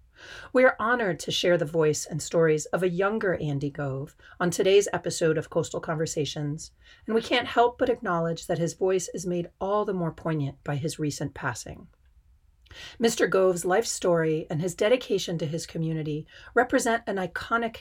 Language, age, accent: English, 40-59, American